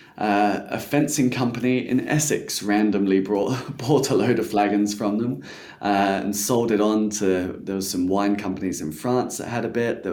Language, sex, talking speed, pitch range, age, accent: English, male, 195 wpm, 100-115 Hz, 20-39, British